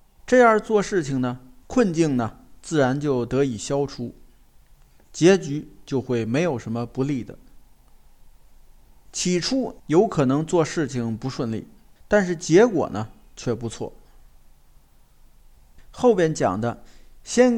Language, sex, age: Chinese, male, 50-69